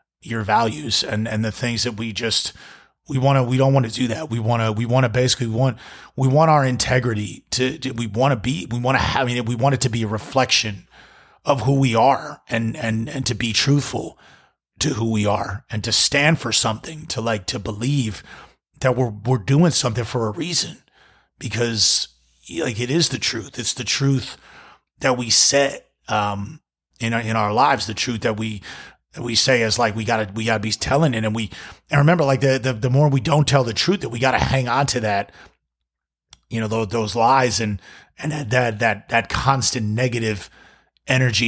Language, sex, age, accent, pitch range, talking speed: English, male, 30-49, American, 110-135 Hz, 215 wpm